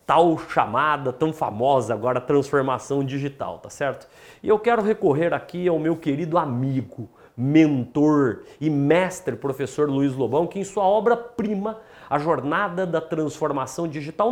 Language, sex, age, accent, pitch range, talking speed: Portuguese, male, 40-59, Brazilian, 145-195 Hz, 140 wpm